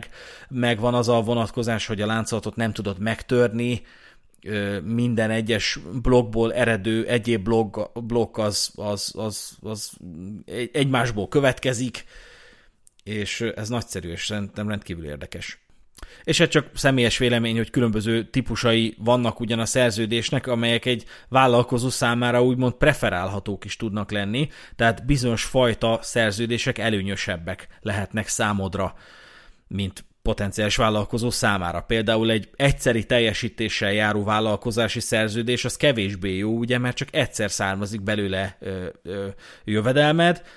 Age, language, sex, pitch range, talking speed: 30-49, Hungarian, male, 105-120 Hz, 115 wpm